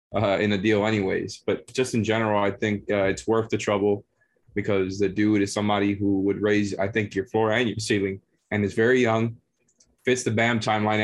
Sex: male